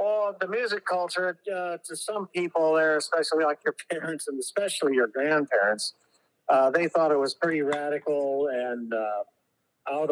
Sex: male